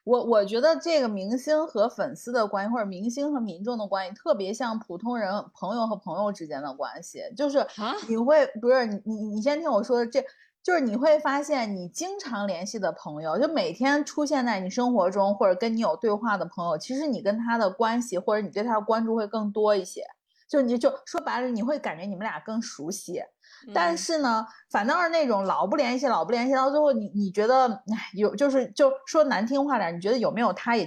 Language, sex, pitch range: Chinese, female, 205-275 Hz